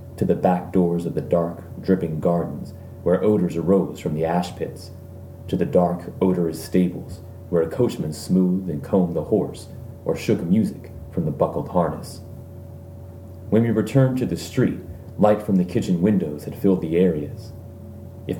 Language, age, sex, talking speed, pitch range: English, 30-49, male, 170 wpm, 90-95 Hz